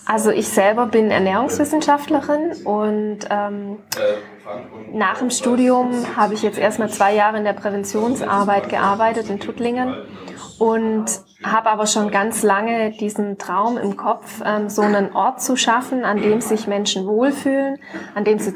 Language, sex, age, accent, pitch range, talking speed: German, female, 20-39, German, 205-225 Hz, 145 wpm